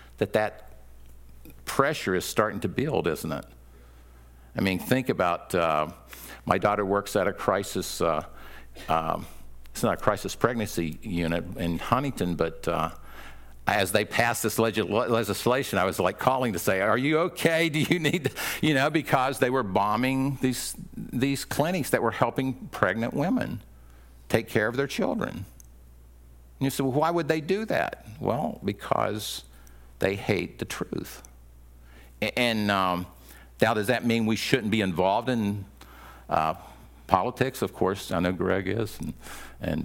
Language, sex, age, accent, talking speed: English, male, 50-69, American, 160 wpm